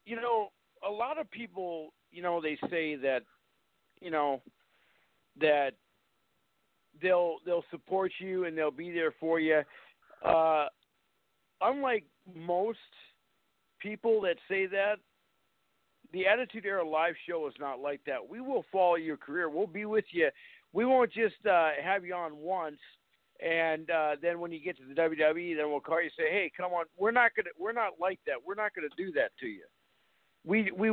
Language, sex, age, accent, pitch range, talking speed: English, male, 50-69, American, 170-230 Hz, 180 wpm